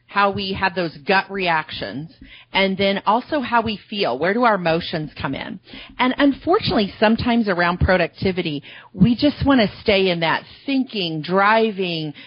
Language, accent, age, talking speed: English, American, 40-59, 155 wpm